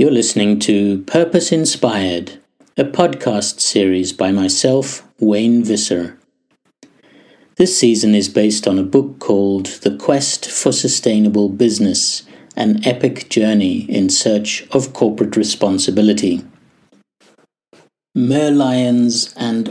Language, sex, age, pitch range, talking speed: English, male, 60-79, 105-130 Hz, 105 wpm